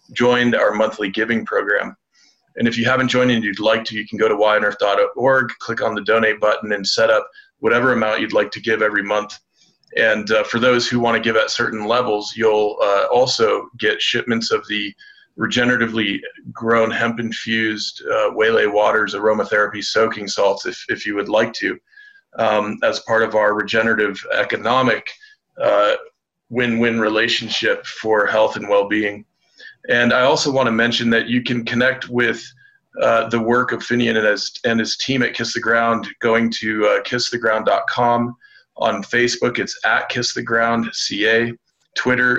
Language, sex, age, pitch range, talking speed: English, male, 40-59, 110-125 Hz, 175 wpm